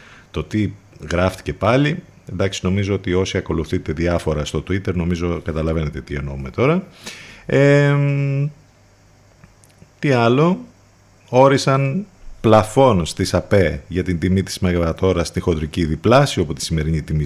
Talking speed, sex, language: 120 wpm, male, Greek